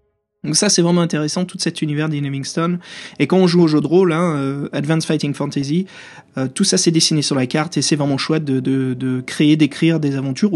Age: 20-39